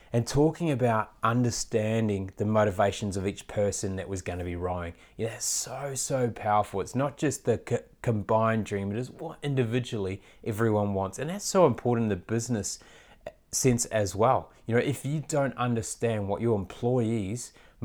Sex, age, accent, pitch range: male, 20-39, Australian, 100-120 Hz